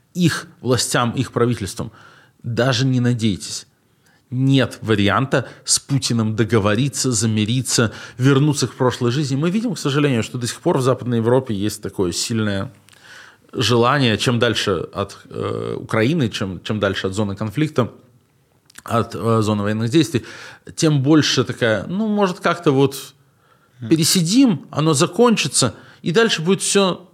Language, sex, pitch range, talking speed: Russian, male, 115-155 Hz, 135 wpm